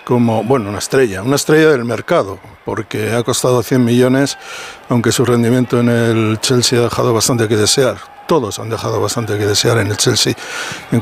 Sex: male